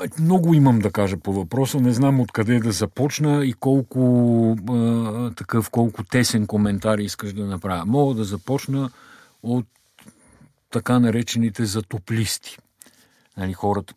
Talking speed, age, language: 130 wpm, 50-69, Bulgarian